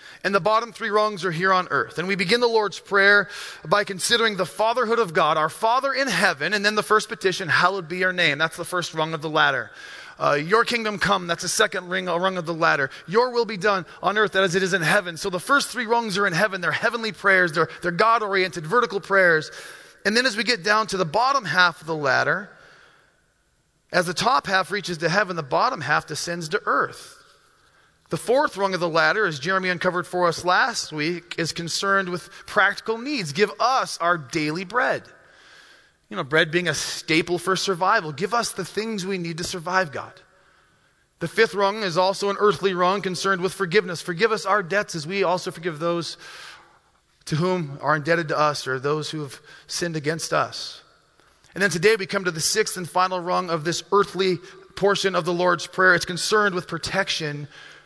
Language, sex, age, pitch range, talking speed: English, male, 30-49, 170-210 Hz, 210 wpm